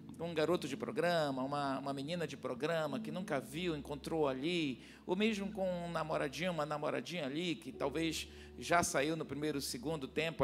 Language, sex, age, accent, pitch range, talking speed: Portuguese, male, 50-69, Brazilian, 145-210 Hz, 170 wpm